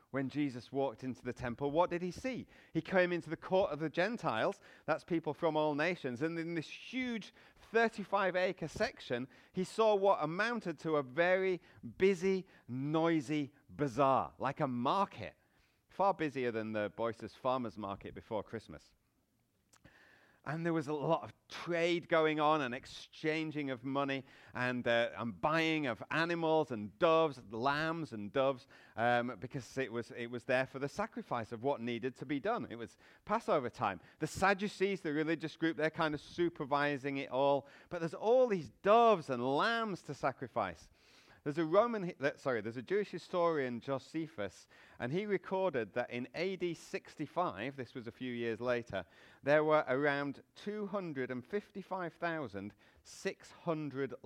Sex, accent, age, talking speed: male, British, 30-49, 155 wpm